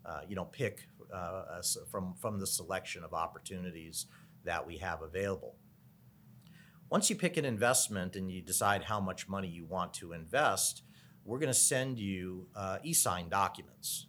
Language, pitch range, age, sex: English, 90-115 Hz, 40-59, male